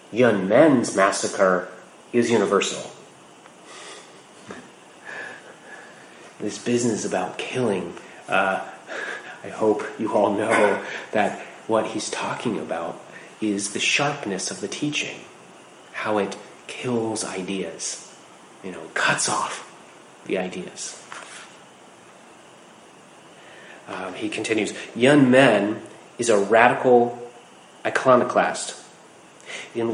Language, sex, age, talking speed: English, male, 30-49, 90 wpm